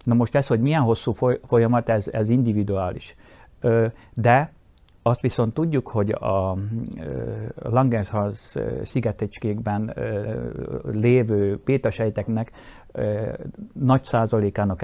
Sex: male